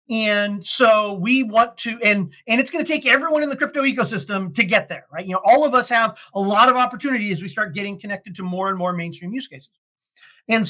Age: 40-59